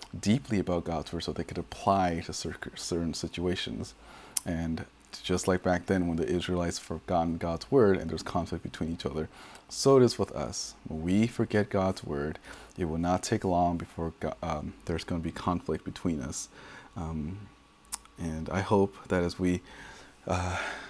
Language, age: English, 30-49